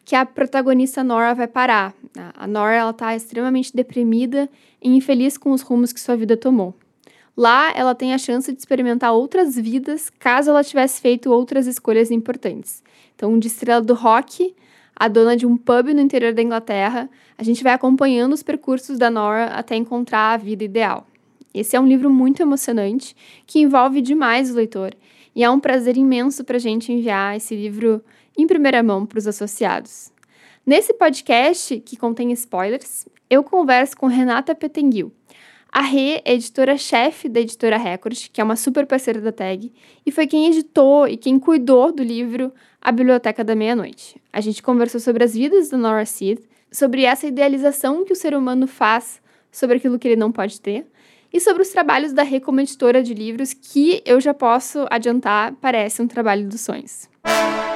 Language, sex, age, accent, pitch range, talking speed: Portuguese, female, 10-29, Brazilian, 230-270 Hz, 180 wpm